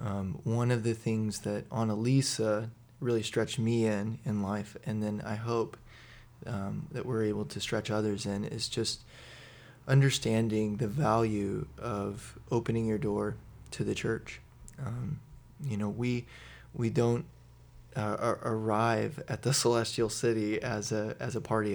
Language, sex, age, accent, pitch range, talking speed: English, male, 20-39, American, 110-125 Hz, 150 wpm